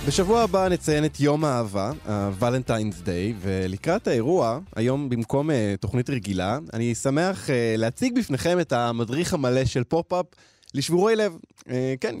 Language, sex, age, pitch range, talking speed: Hebrew, male, 20-39, 105-160 Hz, 150 wpm